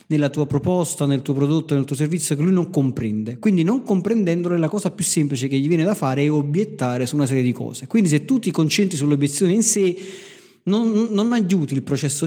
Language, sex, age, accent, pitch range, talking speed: Italian, male, 40-59, native, 135-180 Hz, 220 wpm